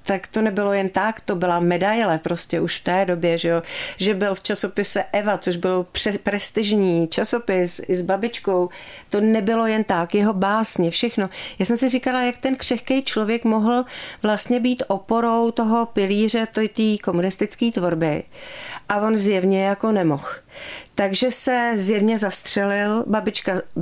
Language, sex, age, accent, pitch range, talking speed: Czech, female, 40-59, native, 190-220 Hz, 155 wpm